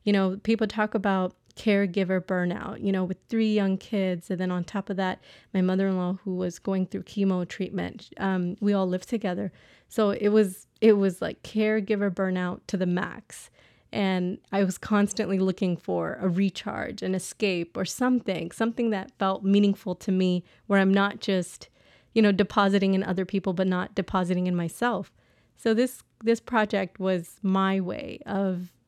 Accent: American